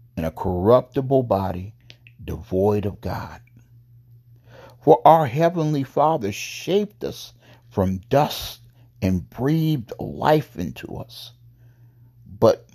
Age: 60-79